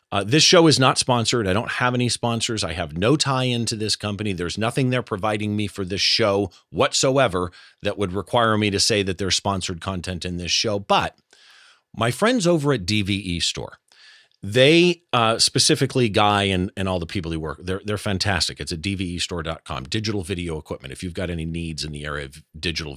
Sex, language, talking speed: male, English, 200 wpm